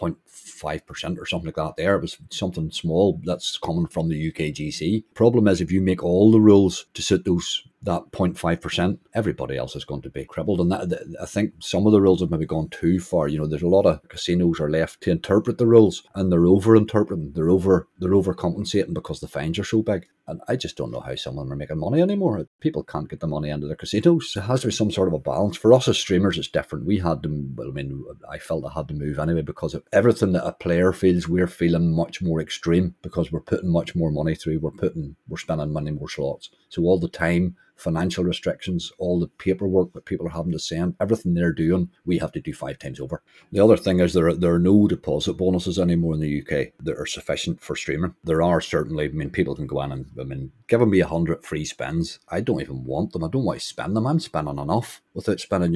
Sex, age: male, 30-49